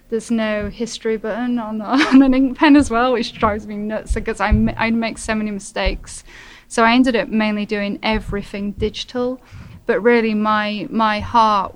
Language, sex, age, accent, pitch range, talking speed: English, female, 10-29, British, 210-230 Hz, 190 wpm